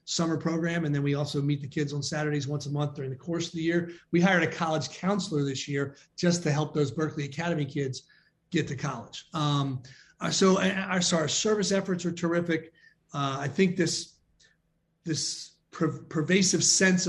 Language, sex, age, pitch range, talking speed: English, male, 40-59, 145-170 Hz, 190 wpm